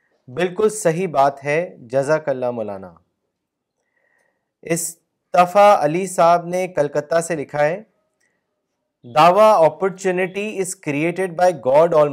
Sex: male